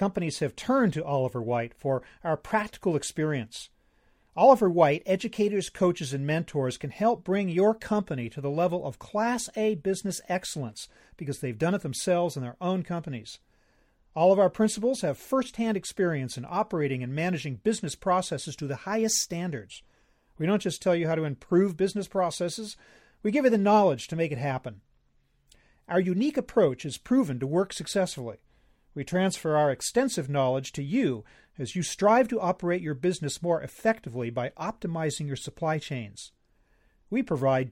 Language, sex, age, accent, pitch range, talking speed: English, male, 40-59, American, 135-200 Hz, 165 wpm